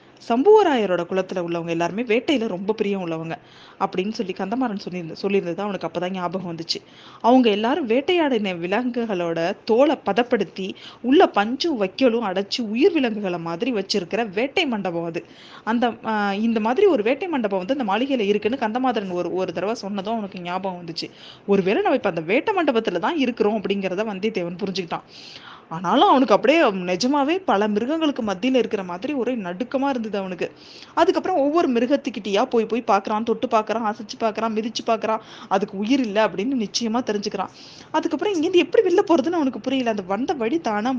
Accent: native